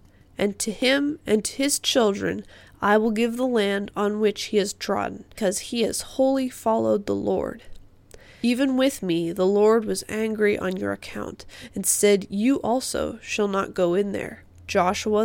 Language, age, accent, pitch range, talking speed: English, 20-39, American, 190-230 Hz, 175 wpm